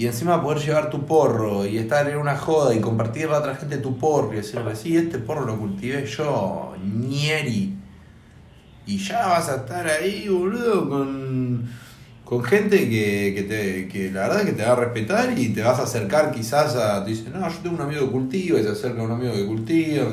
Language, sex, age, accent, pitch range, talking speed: Spanish, male, 30-49, Argentinian, 110-150 Hz, 220 wpm